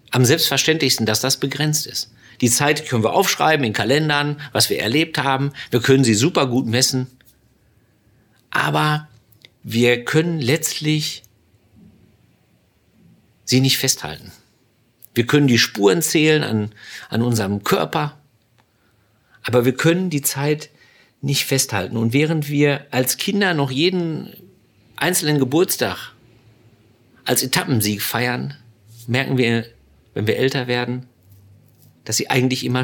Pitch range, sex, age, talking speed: 115-150 Hz, male, 50-69, 125 wpm